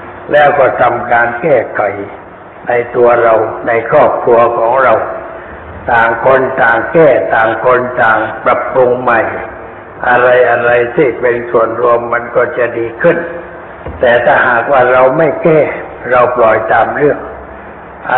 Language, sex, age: Thai, male, 60-79